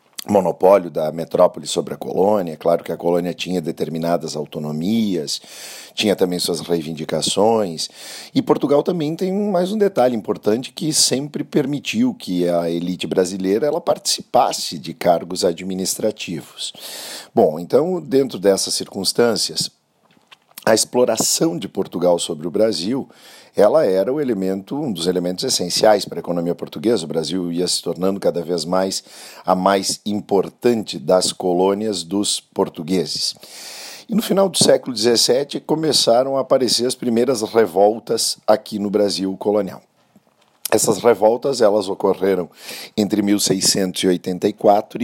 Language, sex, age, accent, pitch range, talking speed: Portuguese, male, 50-69, Brazilian, 90-120 Hz, 130 wpm